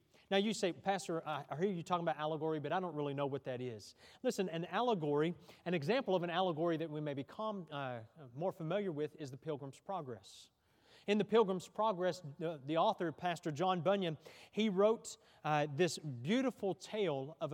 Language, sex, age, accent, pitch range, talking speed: English, male, 40-59, American, 140-190 Hz, 190 wpm